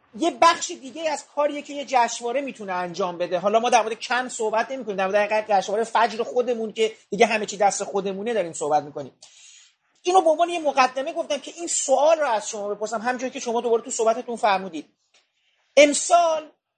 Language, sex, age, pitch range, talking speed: Persian, male, 40-59, 225-300 Hz, 190 wpm